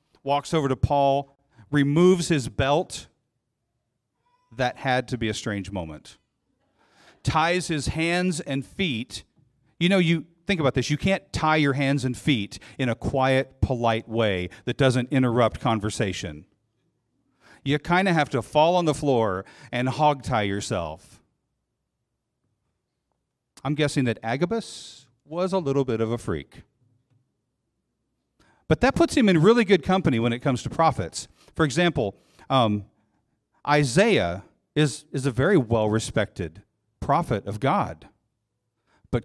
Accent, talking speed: American, 140 wpm